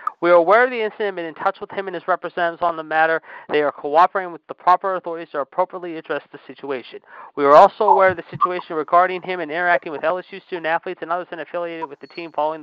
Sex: male